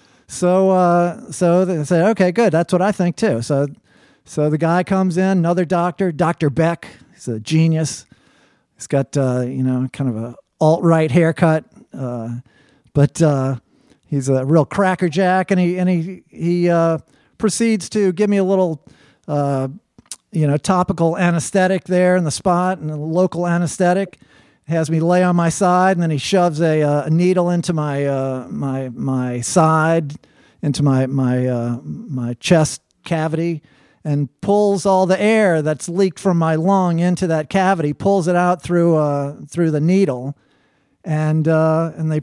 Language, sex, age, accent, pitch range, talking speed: English, male, 50-69, American, 150-185 Hz, 170 wpm